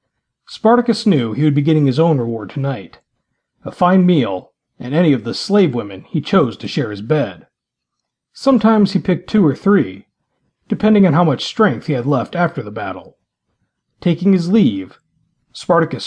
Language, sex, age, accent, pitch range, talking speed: English, male, 40-59, American, 135-190 Hz, 170 wpm